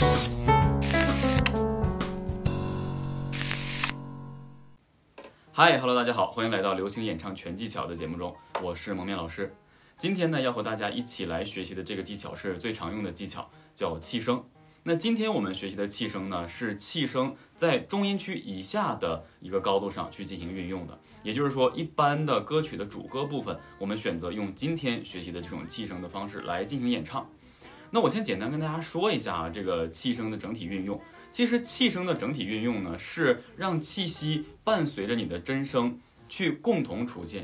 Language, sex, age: Chinese, male, 20-39